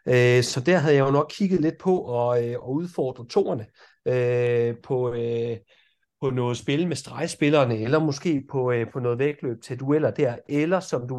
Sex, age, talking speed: male, 30-49, 150 wpm